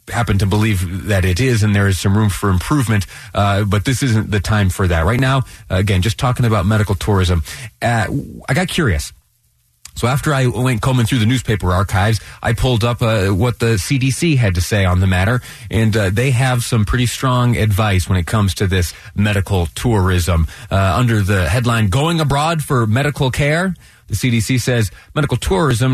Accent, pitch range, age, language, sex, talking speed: American, 100-130 Hz, 30-49, English, male, 195 wpm